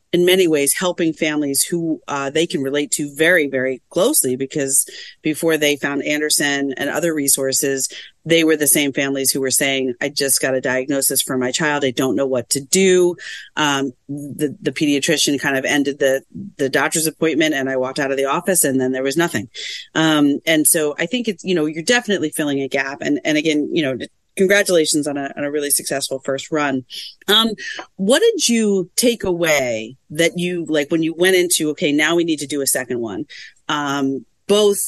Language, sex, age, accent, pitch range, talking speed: English, female, 40-59, American, 135-175 Hz, 205 wpm